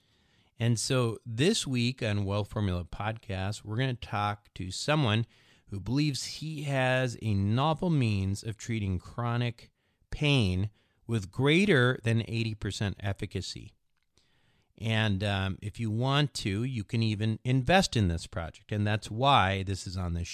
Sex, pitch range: male, 100-125 Hz